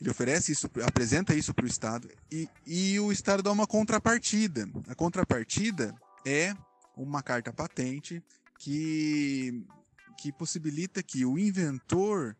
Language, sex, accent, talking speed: Portuguese, male, Brazilian, 130 wpm